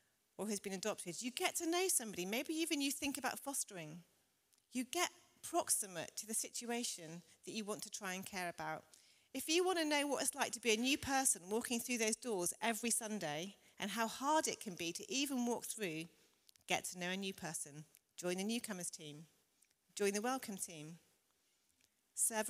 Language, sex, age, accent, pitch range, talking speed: English, female, 40-59, British, 180-240 Hz, 195 wpm